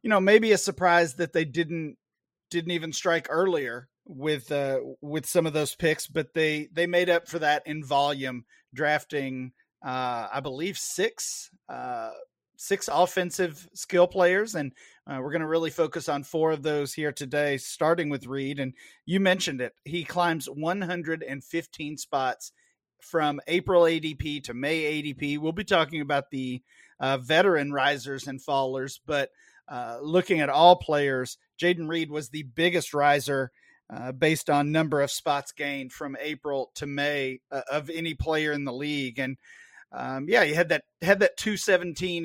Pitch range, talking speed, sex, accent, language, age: 140-170 Hz, 165 wpm, male, American, English, 30-49